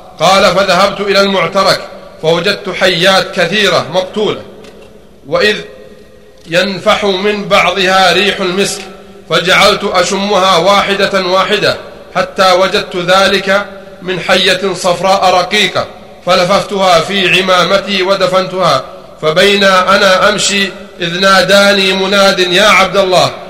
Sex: male